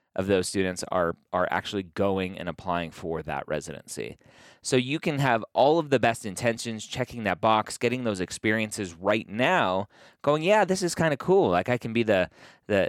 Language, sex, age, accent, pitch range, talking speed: English, male, 30-49, American, 95-125 Hz, 195 wpm